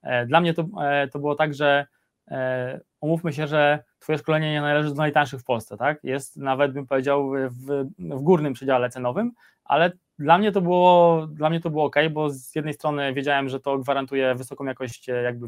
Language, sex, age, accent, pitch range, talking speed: Polish, male, 20-39, native, 135-160 Hz, 190 wpm